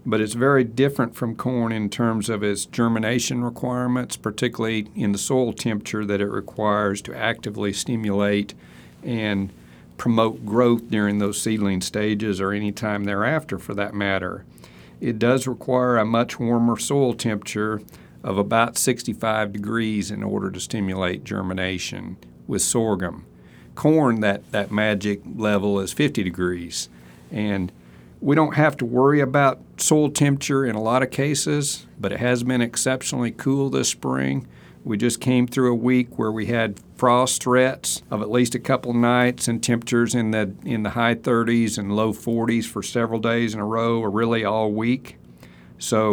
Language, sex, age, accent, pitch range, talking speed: English, male, 50-69, American, 100-120 Hz, 160 wpm